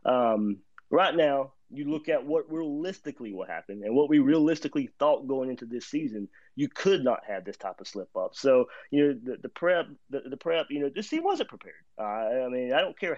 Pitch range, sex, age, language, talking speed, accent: 120-160 Hz, male, 30-49, English, 225 wpm, American